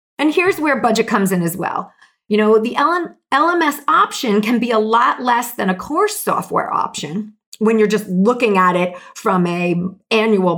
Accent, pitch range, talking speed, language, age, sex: American, 195-280 Hz, 185 wpm, English, 40-59, female